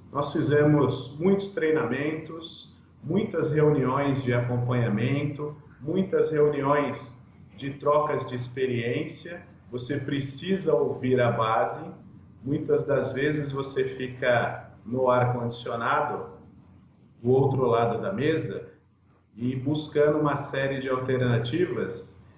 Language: Portuguese